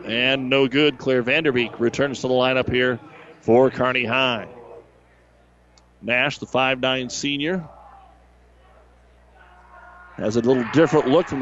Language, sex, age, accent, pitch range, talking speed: English, male, 50-69, American, 115-160 Hz, 120 wpm